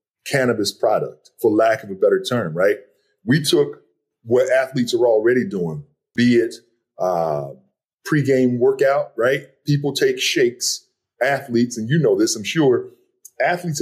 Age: 40-59